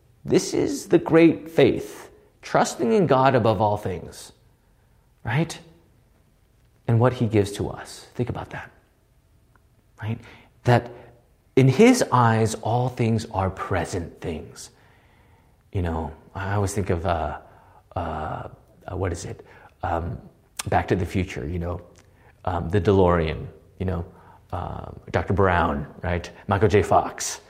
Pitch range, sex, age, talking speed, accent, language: 100-160 Hz, male, 30-49, 135 wpm, American, English